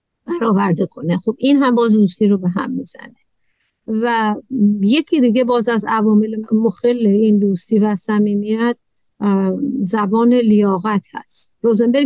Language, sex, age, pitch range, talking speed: Persian, female, 50-69, 210-260 Hz, 130 wpm